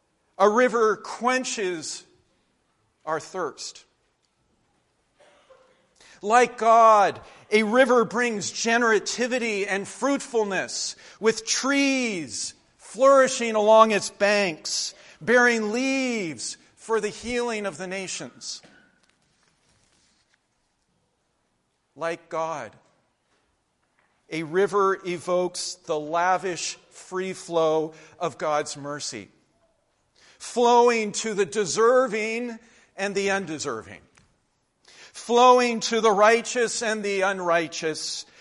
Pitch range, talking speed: 185-240 Hz, 85 wpm